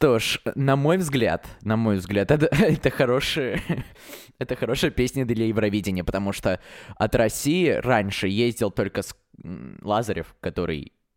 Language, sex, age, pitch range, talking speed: Russian, male, 20-39, 90-120 Hz, 140 wpm